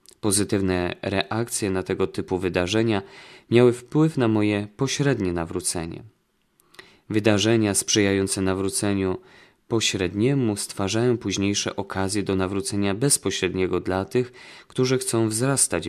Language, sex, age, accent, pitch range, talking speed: Polish, male, 20-39, native, 95-115 Hz, 100 wpm